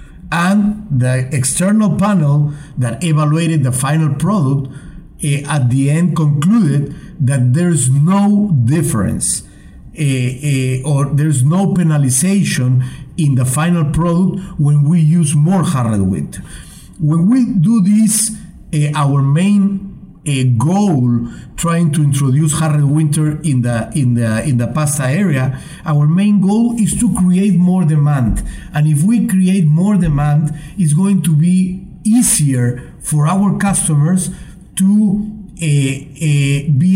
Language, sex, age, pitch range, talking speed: English, male, 50-69, 140-185 Hz, 135 wpm